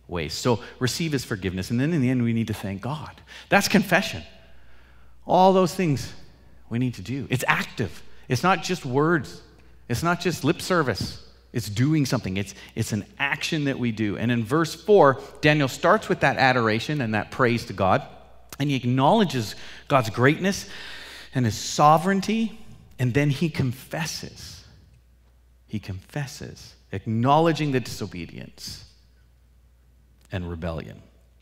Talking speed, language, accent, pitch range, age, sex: 145 wpm, English, American, 95-140 Hz, 40-59, male